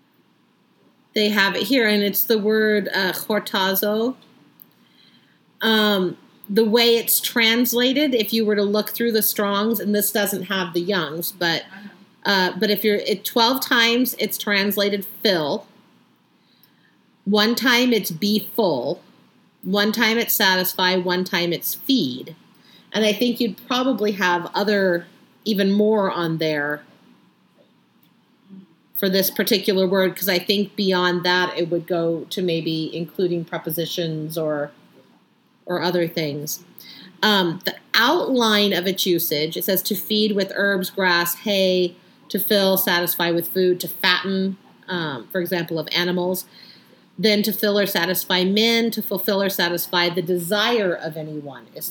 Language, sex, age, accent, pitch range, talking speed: English, female, 40-59, American, 175-210 Hz, 145 wpm